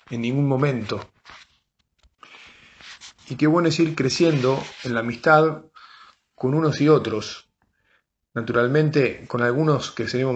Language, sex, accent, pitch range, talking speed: Spanish, male, Argentinian, 125-155 Hz, 115 wpm